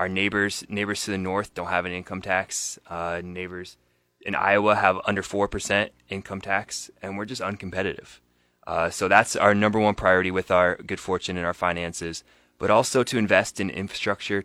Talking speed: 185 wpm